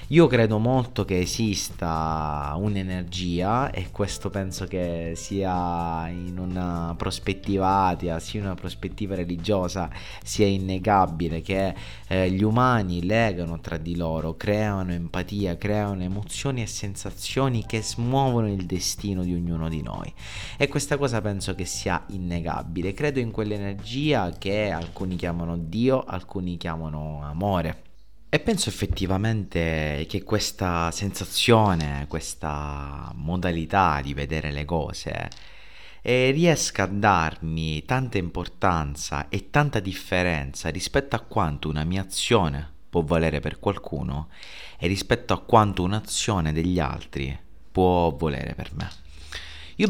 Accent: native